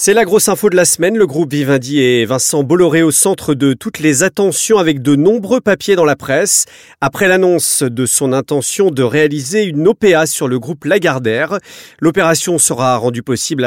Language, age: French, 40-59